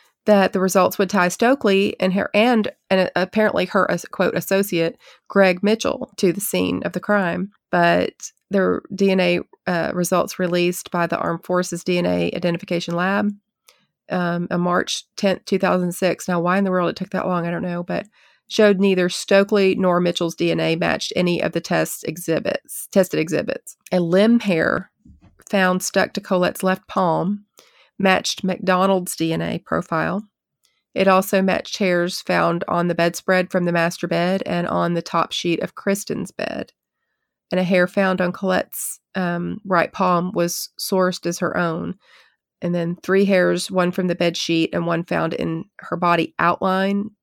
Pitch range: 175-195 Hz